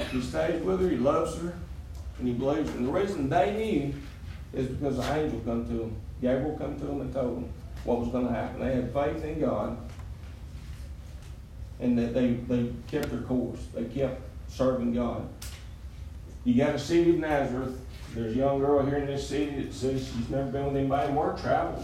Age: 50-69